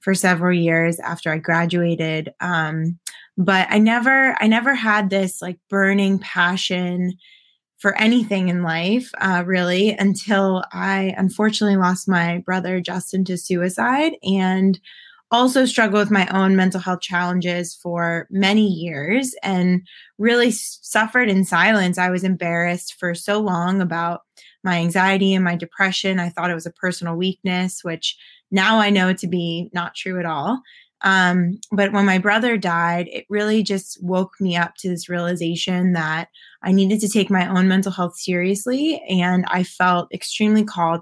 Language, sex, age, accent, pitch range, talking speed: English, female, 20-39, American, 175-200 Hz, 160 wpm